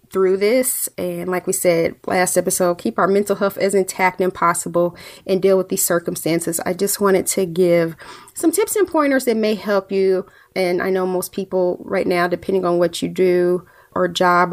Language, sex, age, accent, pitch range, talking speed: English, female, 30-49, American, 175-195 Hz, 200 wpm